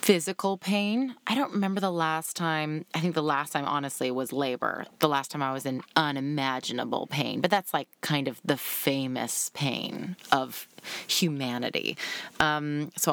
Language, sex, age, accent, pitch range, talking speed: English, female, 30-49, American, 150-190 Hz, 165 wpm